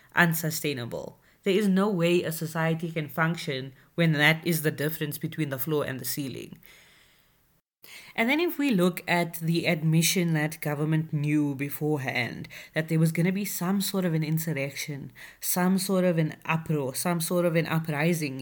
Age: 20-39